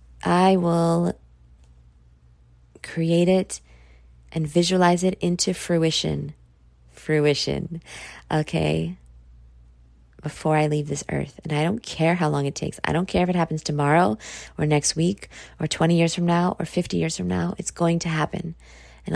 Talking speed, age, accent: 155 wpm, 20-39, American